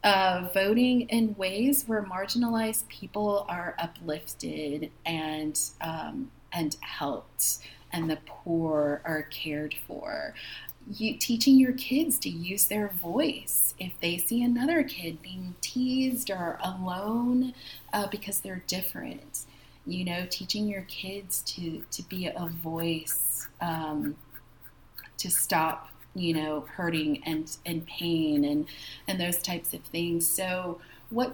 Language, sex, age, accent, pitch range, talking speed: English, female, 30-49, American, 160-195 Hz, 130 wpm